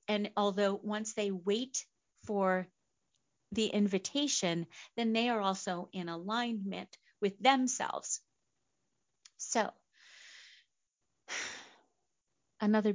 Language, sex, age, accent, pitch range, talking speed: English, female, 40-59, American, 185-230 Hz, 85 wpm